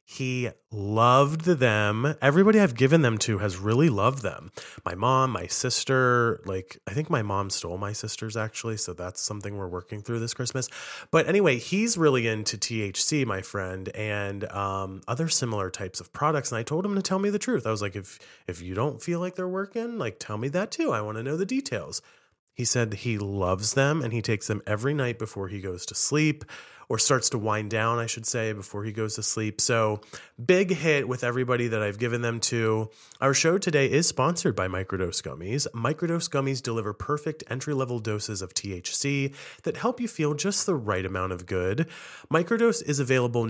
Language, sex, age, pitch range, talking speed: English, male, 30-49, 105-145 Hz, 205 wpm